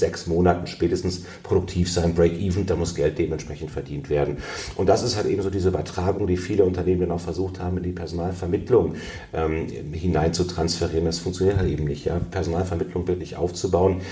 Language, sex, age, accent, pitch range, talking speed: German, male, 40-59, German, 85-90 Hz, 185 wpm